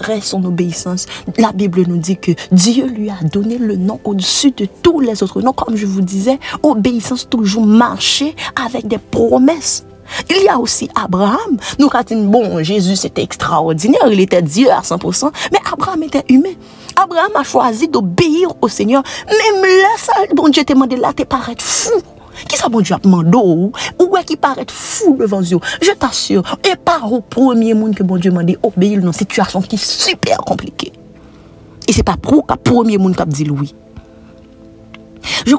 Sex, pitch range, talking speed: female, 185-280 Hz, 185 wpm